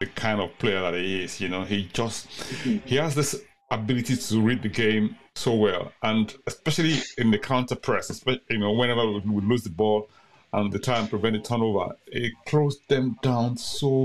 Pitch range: 105-130 Hz